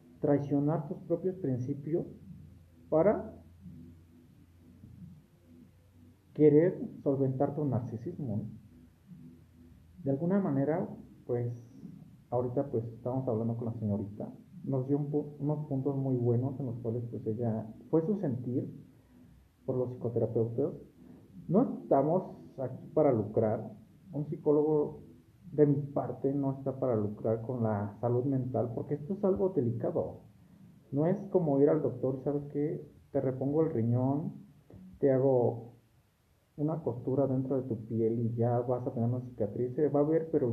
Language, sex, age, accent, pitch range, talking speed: Spanish, male, 50-69, Mexican, 115-150 Hz, 135 wpm